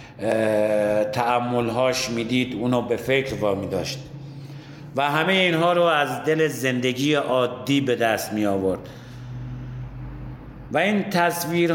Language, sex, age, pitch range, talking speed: Persian, male, 50-69, 120-150 Hz, 125 wpm